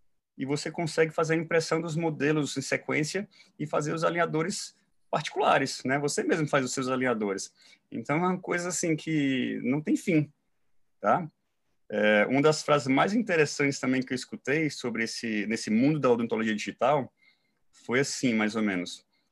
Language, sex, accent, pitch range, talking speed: Portuguese, male, Brazilian, 130-160 Hz, 170 wpm